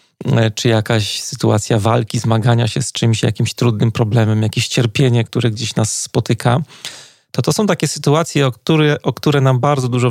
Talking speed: 165 wpm